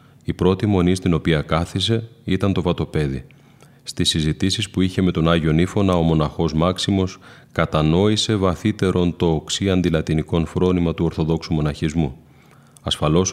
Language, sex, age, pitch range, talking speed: Greek, male, 30-49, 80-100 Hz, 135 wpm